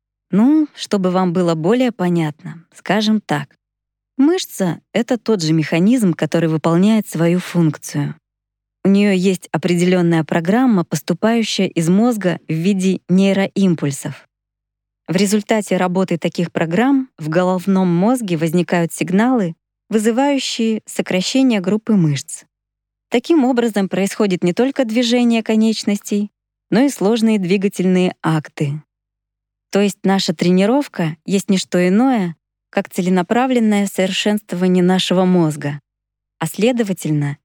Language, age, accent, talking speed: Russian, 20-39, native, 110 wpm